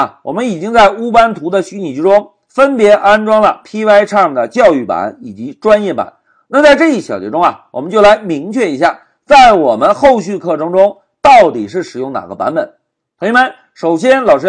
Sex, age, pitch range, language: male, 50-69, 200-290 Hz, Chinese